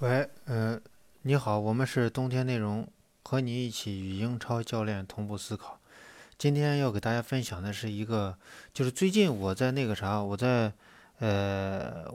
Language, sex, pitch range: Chinese, male, 100-135 Hz